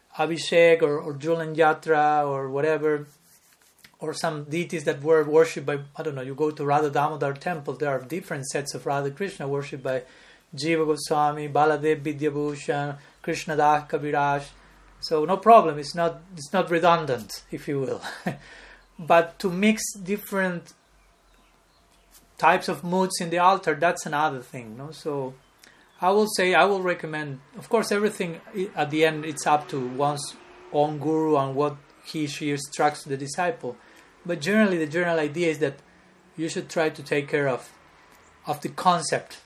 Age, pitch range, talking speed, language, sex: 30-49, 145-170 Hz, 160 wpm, English, male